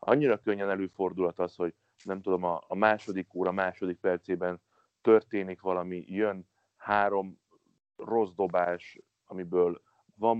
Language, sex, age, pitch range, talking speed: Hungarian, male, 30-49, 90-100 Hz, 115 wpm